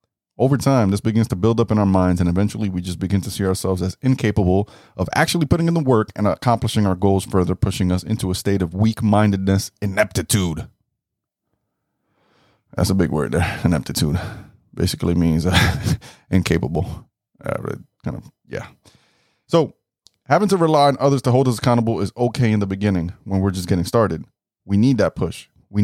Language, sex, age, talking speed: English, male, 30-49, 185 wpm